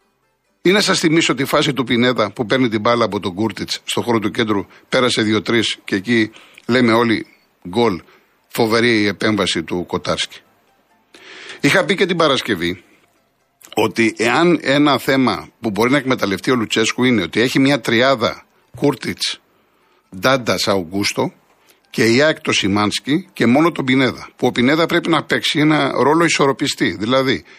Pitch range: 120-175 Hz